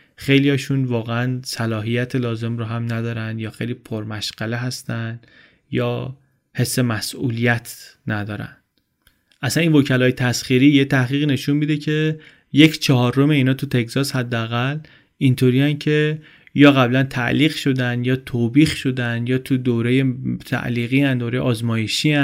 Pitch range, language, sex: 120-145 Hz, Persian, male